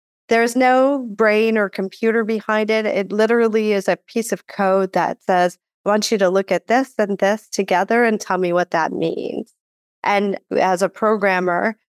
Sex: female